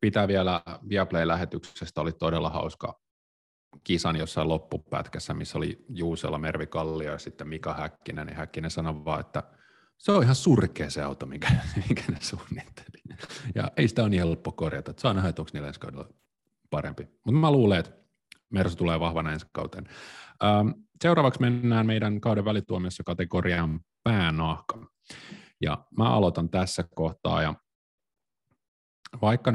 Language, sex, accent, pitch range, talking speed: Finnish, male, native, 80-105 Hz, 135 wpm